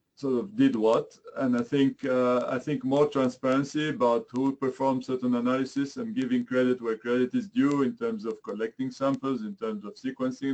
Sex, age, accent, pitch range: male, 40-59, French, 130-215 Hz